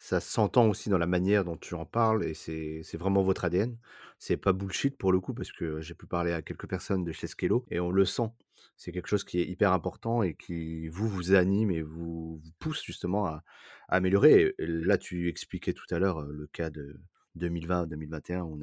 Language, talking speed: French, 220 wpm